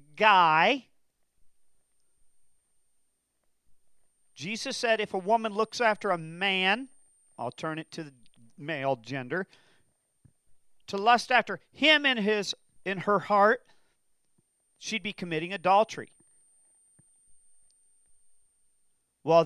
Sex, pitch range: male, 165-225 Hz